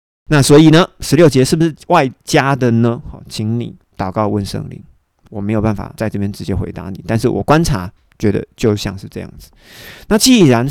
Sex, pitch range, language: male, 105-145 Hz, Chinese